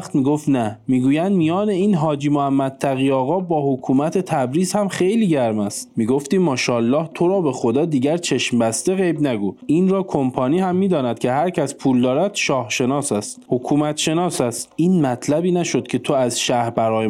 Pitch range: 125-175 Hz